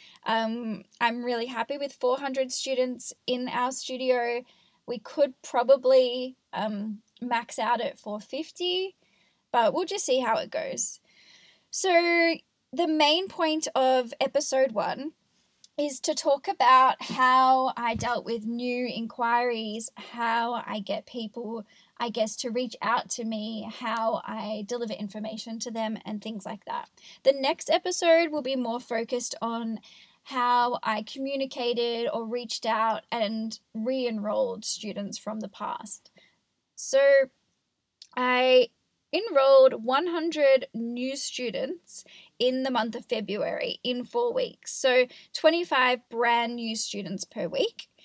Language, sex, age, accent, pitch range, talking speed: English, female, 10-29, Australian, 225-270 Hz, 130 wpm